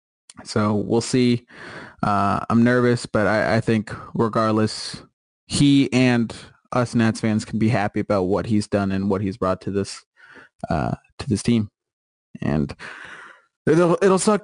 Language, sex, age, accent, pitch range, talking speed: English, male, 20-39, American, 110-130 Hz, 155 wpm